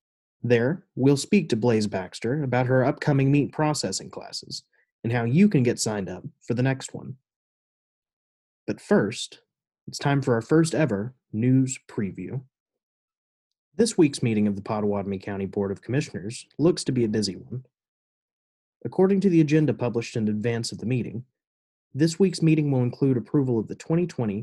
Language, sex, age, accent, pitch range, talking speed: English, male, 30-49, American, 105-145 Hz, 165 wpm